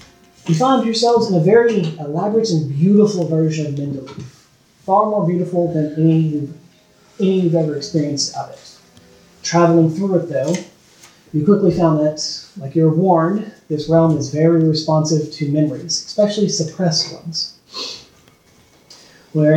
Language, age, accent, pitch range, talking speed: English, 30-49, American, 155-180 Hz, 140 wpm